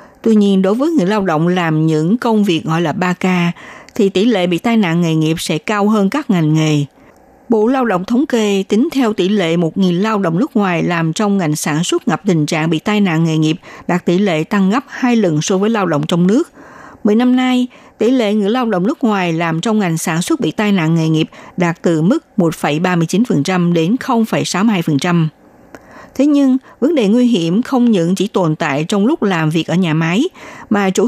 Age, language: 60-79, Vietnamese